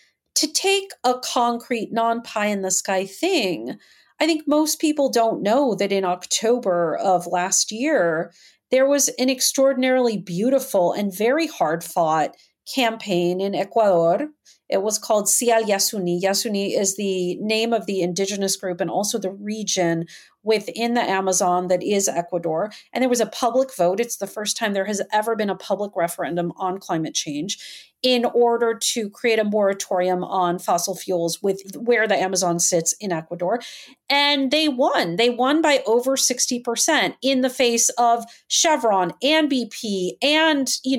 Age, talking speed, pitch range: 40-59, 155 wpm, 190-260 Hz